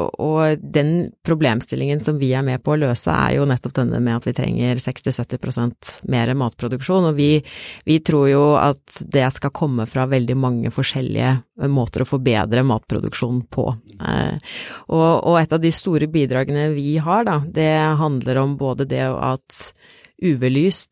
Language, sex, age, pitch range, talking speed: English, female, 30-49, 125-150 Hz, 155 wpm